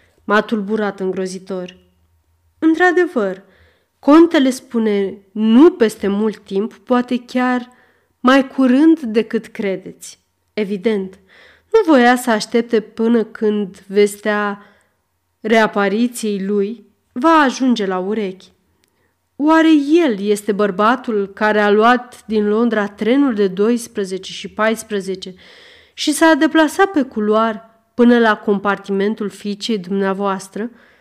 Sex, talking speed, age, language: female, 105 wpm, 30-49, Romanian